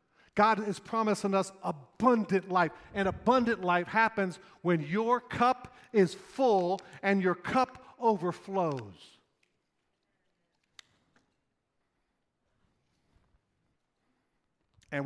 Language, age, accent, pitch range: English, 50-69, American, 145-220 Hz